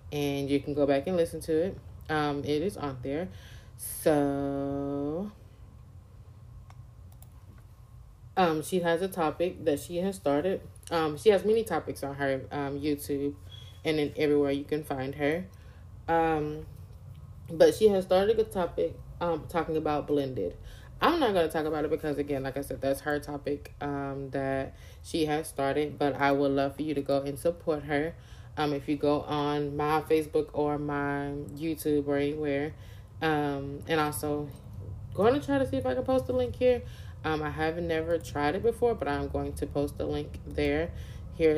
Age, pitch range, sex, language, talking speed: 20-39, 135-155 Hz, female, English, 180 wpm